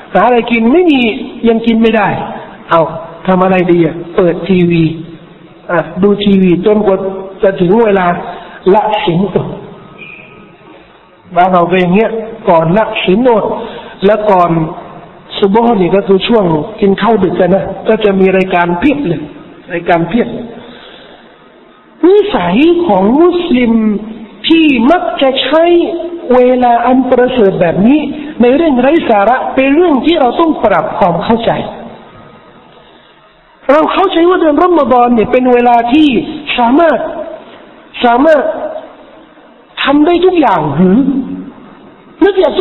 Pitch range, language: 190-300 Hz, Thai